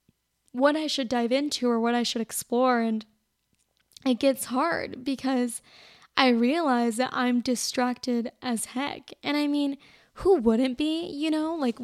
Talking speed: 155 wpm